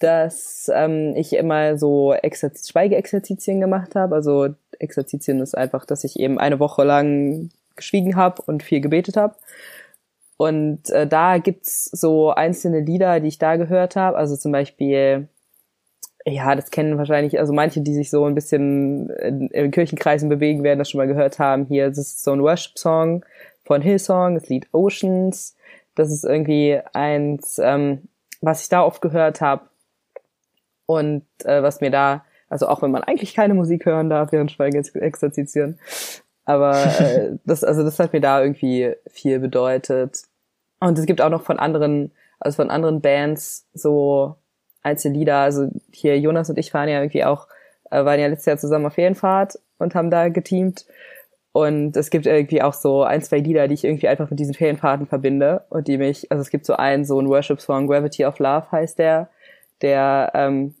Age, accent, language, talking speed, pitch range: 20-39, German, German, 180 wpm, 140-165 Hz